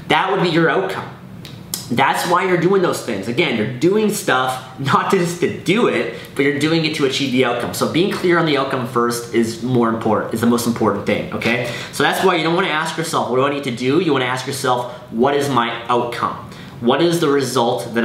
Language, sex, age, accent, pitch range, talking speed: English, male, 20-39, American, 115-140 Hz, 235 wpm